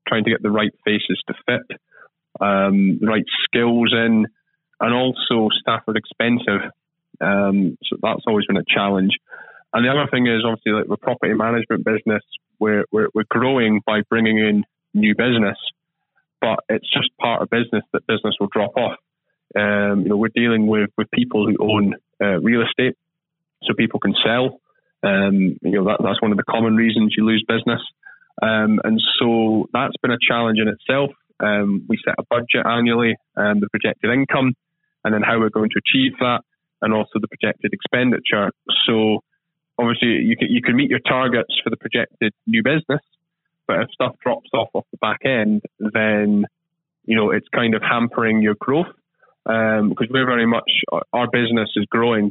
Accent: British